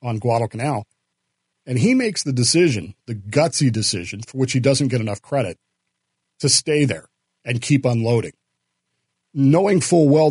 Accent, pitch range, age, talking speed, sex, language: American, 120-145 Hz, 40-59, 150 wpm, male, English